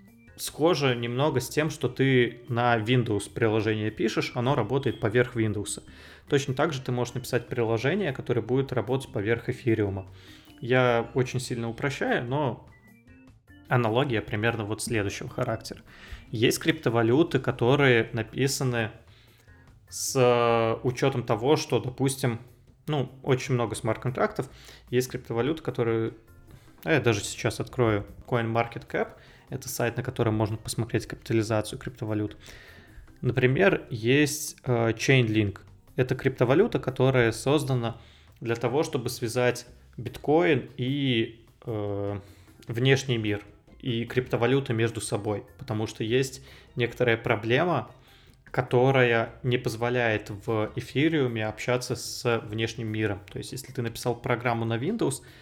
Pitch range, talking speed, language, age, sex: 115-130 Hz, 115 wpm, Russian, 20-39, male